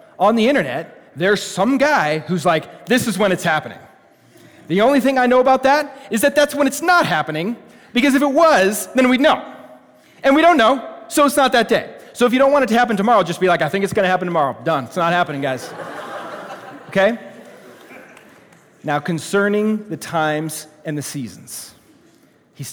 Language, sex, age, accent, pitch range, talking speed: English, male, 30-49, American, 130-205 Hz, 200 wpm